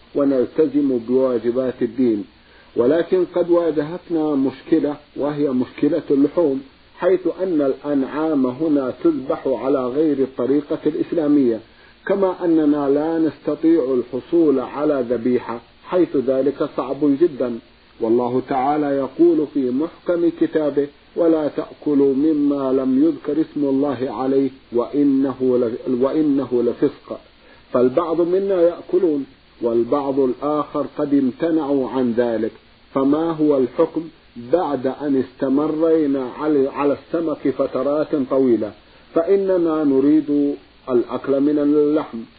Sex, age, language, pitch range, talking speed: male, 50-69, Arabic, 130-160 Hz, 100 wpm